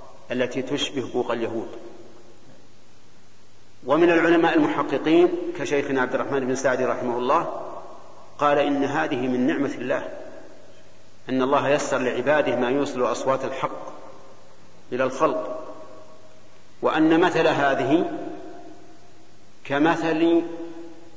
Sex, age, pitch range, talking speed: male, 50-69, 120-165 Hz, 95 wpm